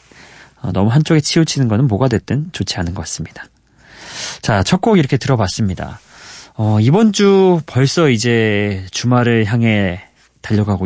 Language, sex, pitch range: Korean, male, 100-155 Hz